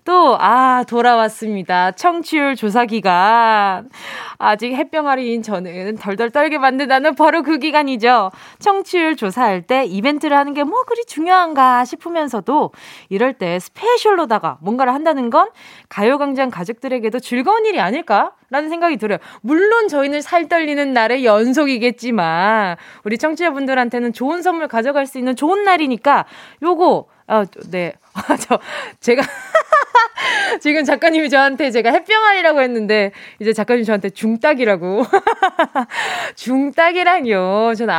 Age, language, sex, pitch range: 20-39, Korean, female, 225-335 Hz